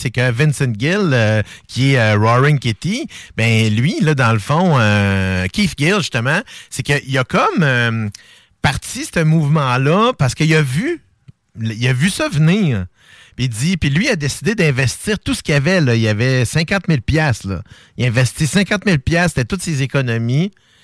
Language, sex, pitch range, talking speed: French, male, 120-165 Hz, 180 wpm